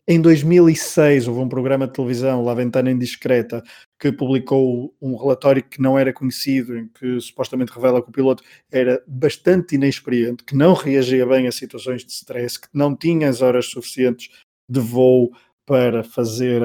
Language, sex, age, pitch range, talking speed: Portuguese, male, 20-39, 120-135 Hz, 165 wpm